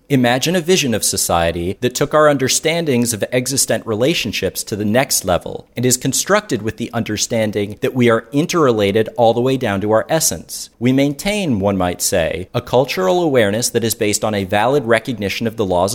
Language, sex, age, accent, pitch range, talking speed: English, male, 40-59, American, 105-135 Hz, 190 wpm